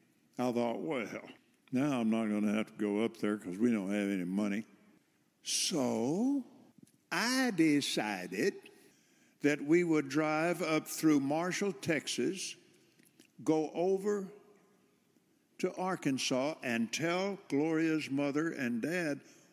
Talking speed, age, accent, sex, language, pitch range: 125 wpm, 60-79, American, male, English, 110-155 Hz